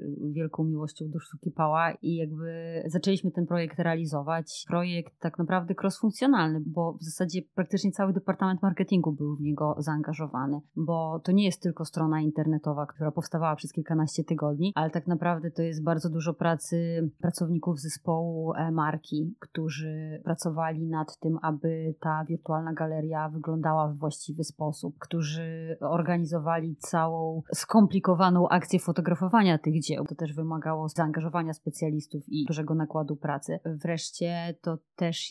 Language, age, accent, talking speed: Polish, 30-49, native, 135 wpm